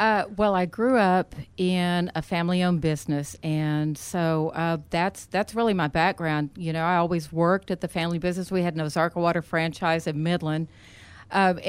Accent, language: American, English